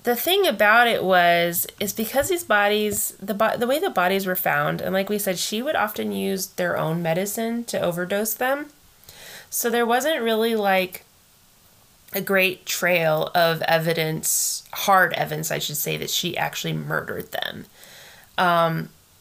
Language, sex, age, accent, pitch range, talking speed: English, female, 20-39, American, 165-205 Hz, 160 wpm